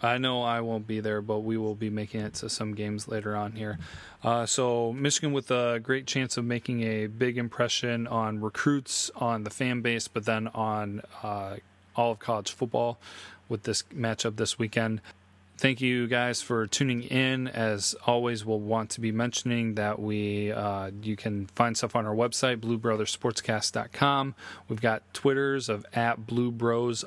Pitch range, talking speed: 105-120 Hz, 175 wpm